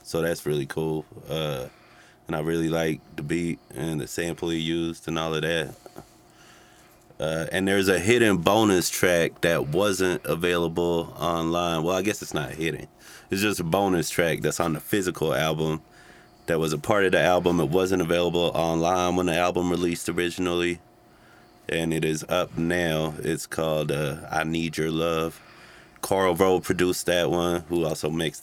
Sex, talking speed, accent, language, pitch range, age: male, 175 wpm, American, English, 80-85 Hz, 30-49